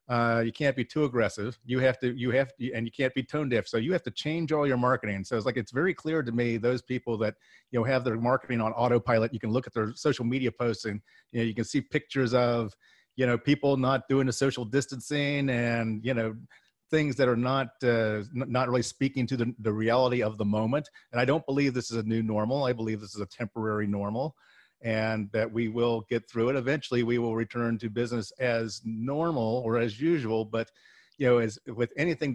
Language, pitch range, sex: English, 115-135 Hz, male